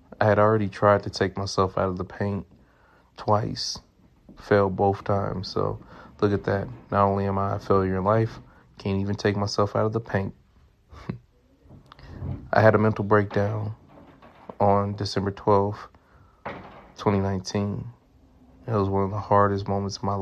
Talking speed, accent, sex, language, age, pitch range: 155 wpm, American, male, English, 30-49, 95-105 Hz